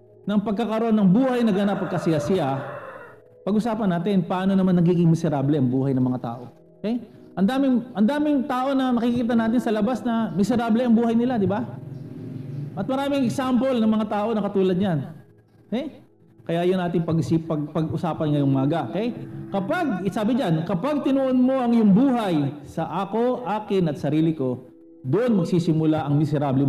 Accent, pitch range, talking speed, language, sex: native, 155-215 Hz, 155 wpm, Filipino, male